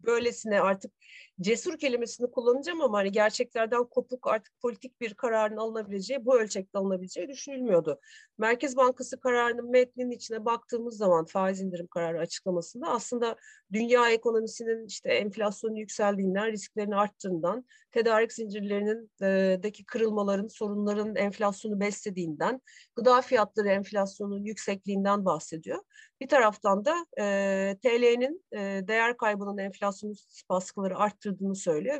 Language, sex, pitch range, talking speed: Turkish, female, 200-255 Hz, 115 wpm